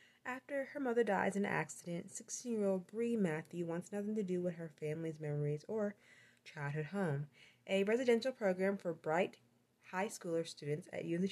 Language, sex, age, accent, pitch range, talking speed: English, female, 20-39, American, 160-220 Hz, 165 wpm